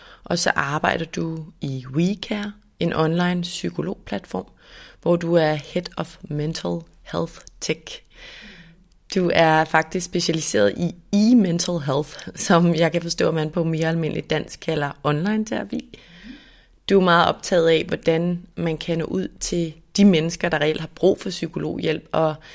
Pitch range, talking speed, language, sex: 155-180 Hz, 150 wpm, Danish, female